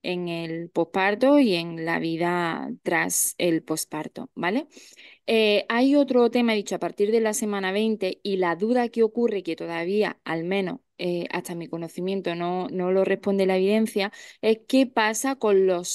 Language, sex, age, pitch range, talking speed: Spanish, female, 20-39, 185-220 Hz, 175 wpm